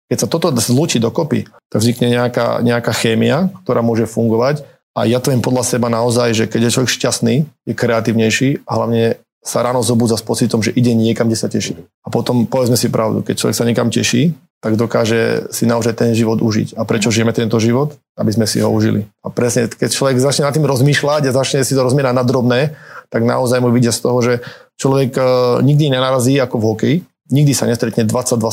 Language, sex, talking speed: Slovak, male, 205 wpm